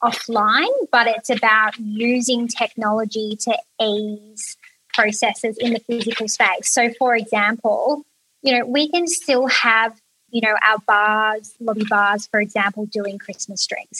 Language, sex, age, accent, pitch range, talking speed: English, female, 20-39, Australian, 210-240 Hz, 140 wpm